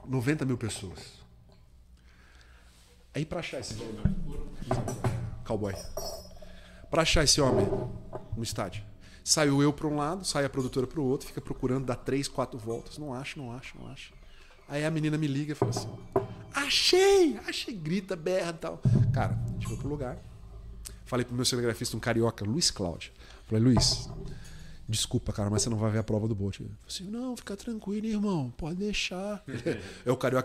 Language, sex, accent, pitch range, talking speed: Portuguese, male, Brazilian, 105-155 Hz, 175 wpm